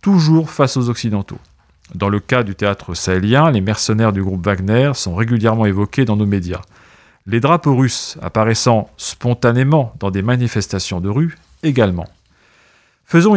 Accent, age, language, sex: French, 40-59, French, male